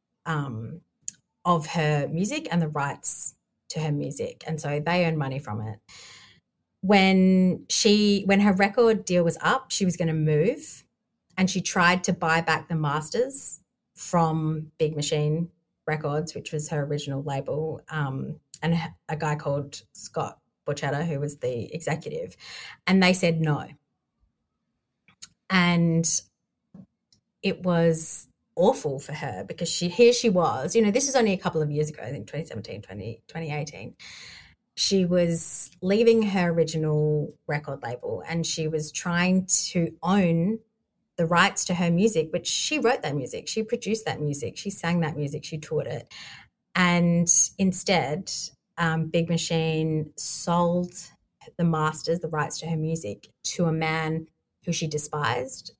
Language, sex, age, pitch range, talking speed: English, female, 30-49, 150-180 Hz, 150 wpm